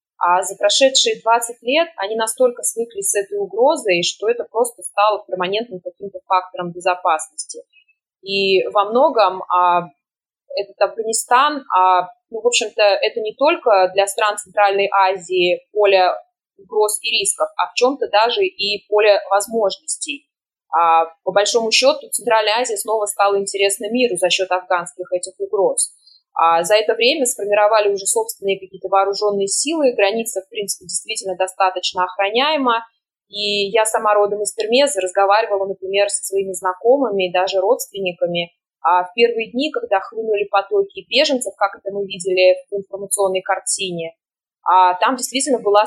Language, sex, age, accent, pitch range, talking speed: Russian, female, 20-39, native, 190-235 Hz, 135 wpm